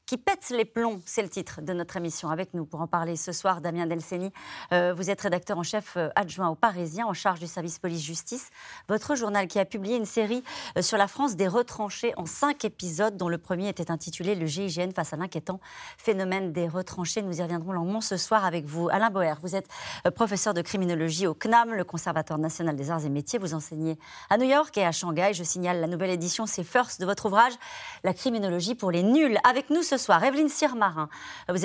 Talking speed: 235 wpm